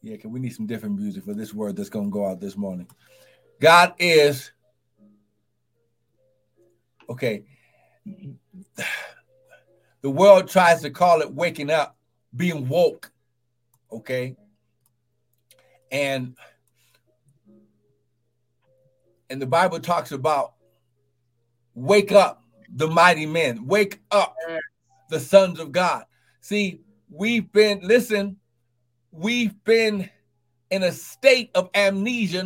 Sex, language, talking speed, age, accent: male, English, 105 wpm, 60-79, American